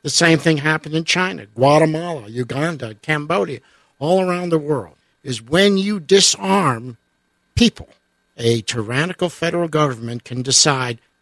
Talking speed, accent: 130 wpm, American